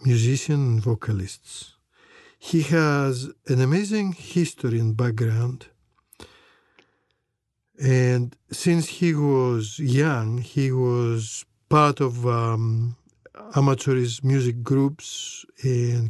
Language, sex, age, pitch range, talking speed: English, male, 50-69, 120-155 Hz, 90 wpm